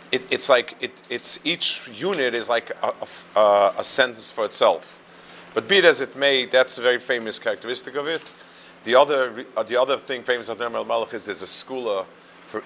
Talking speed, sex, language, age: 185 wpm, male, English, 40-59